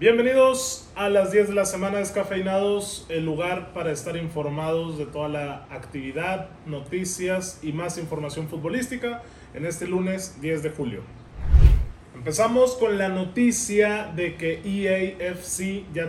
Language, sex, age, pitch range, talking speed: Spanish, male, 20-39, 145-190 Hz, 135 wpm